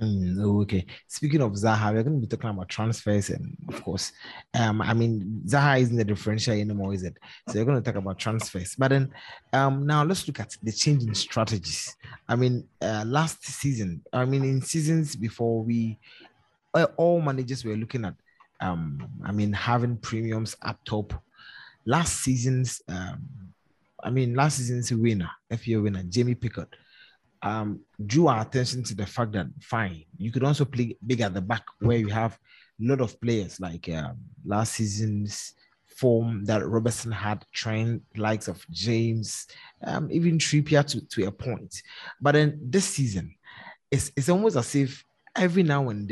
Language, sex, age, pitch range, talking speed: English, male, 20-39, 105-130 Hz, 175 wpm